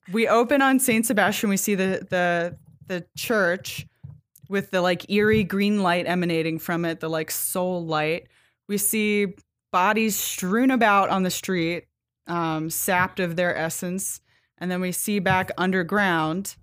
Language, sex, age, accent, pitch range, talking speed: English, female, 20-39, American, 170-200 Hz, 155 wpm